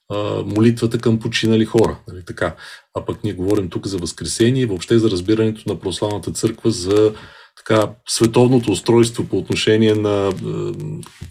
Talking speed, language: 150 wpm, Bulgarian